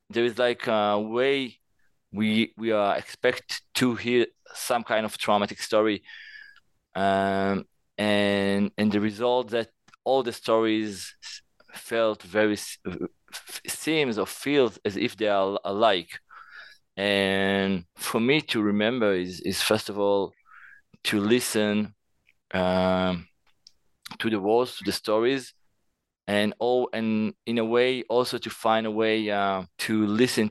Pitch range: 95-115 Hz